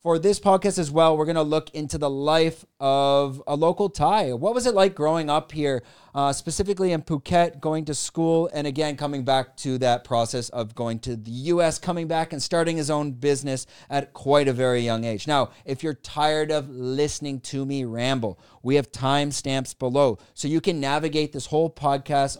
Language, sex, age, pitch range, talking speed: English, male, 30-49, 120-155 Hz, 200 wpm